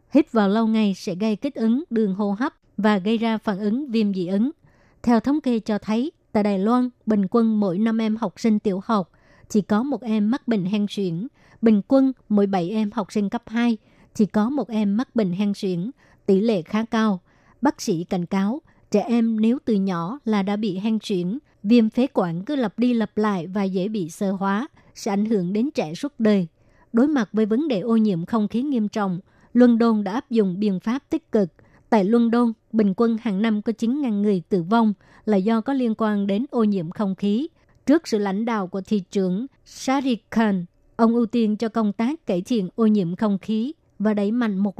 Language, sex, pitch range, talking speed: Vietnamese, male, 205-235 Hz, 220 wpm